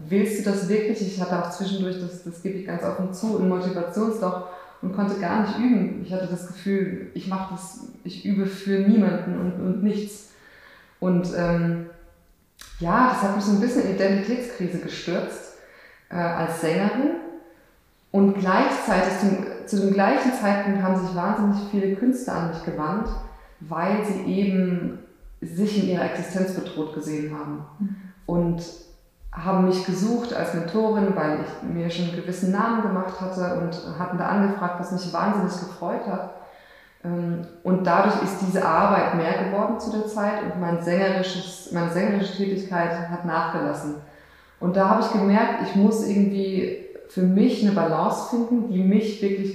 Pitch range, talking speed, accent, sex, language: 175-205 Hz, 160 wpm, German, female, German